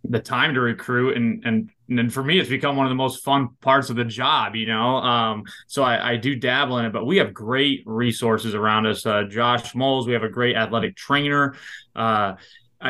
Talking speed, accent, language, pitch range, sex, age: 220 wpm, American, English, 115-130 Hz, male, 20-39